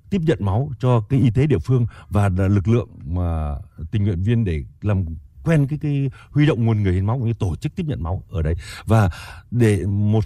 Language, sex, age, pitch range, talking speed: Vietnamese, male, 60-79, 100-130 Hz, 230 wpm